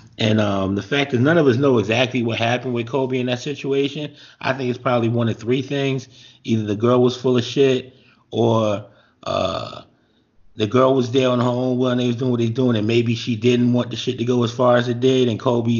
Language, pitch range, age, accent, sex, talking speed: English, 120-145 Hz, 30-49, American, male, 245 wpm